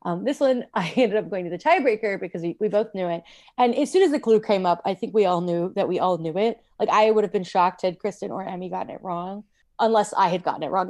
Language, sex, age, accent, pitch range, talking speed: English, female, 20-39, American, 180-220 Hz, 290 wpm